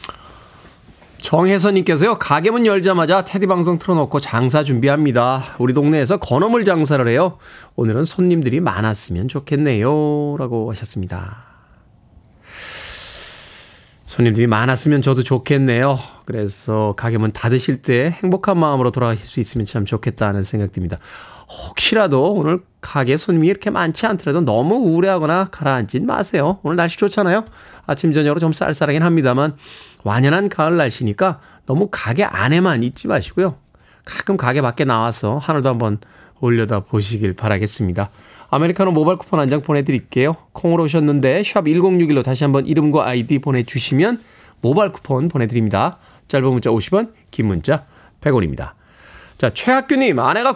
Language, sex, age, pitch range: Korean, male, 20-39, 120-185 Hz